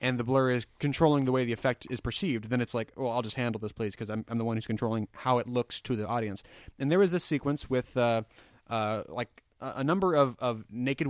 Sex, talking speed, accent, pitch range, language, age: male, 260 wpm, American, 115-155 Hz, English, 30-49